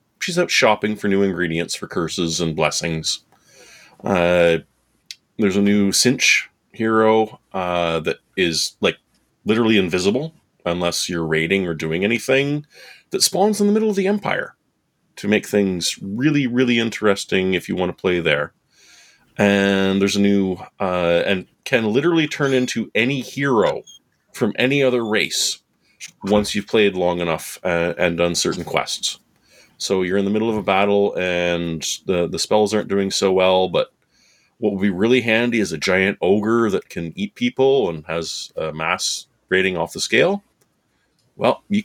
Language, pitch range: English, 85-115 Hz